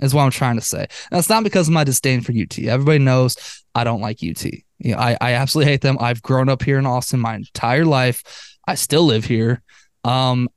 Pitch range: 120-140 Hz